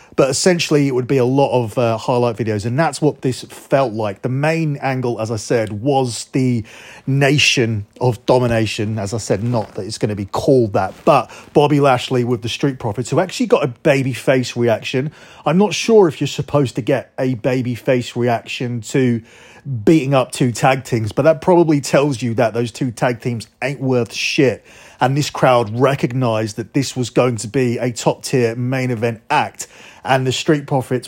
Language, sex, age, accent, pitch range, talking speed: English, male, 30-49, British, 120-140 Hz, 200 wpm